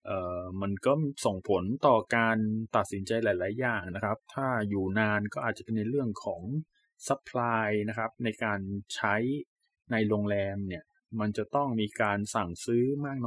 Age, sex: 20-39, male